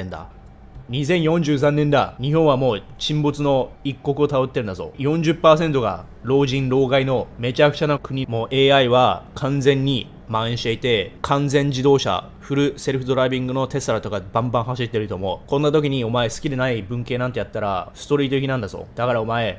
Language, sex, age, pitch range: Japanese, male, 20-39, 120-150 Hz